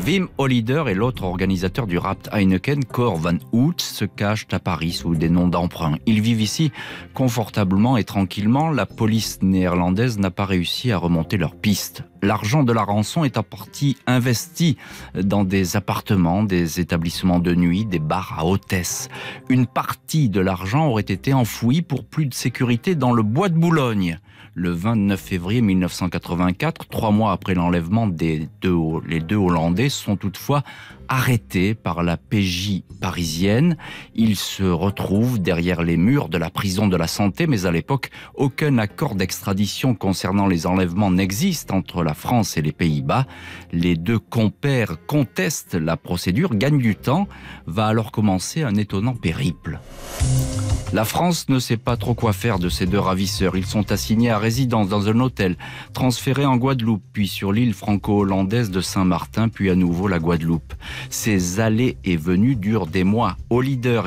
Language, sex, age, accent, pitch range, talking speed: French, male, 40-59, French, 90-120 Hz, 165 wpm